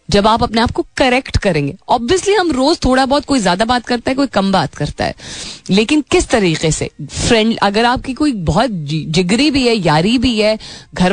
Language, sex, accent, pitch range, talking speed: Hindi, female, native, 170-235 Hz, 205 wpm